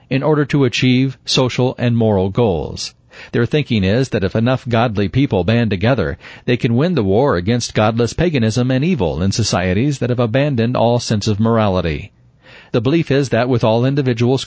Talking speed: 185 wpm